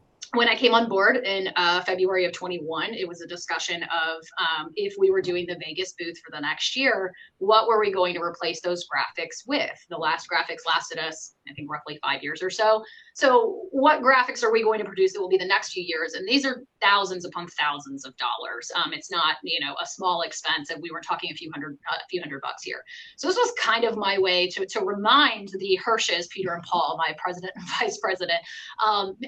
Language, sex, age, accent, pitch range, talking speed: English, female, 30-49, American, 175-265 Hz, 230 wpm